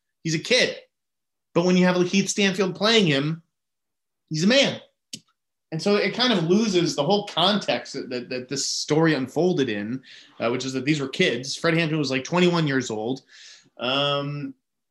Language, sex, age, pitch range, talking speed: English, male, 30-49, 130-170 Hz, 180 wpm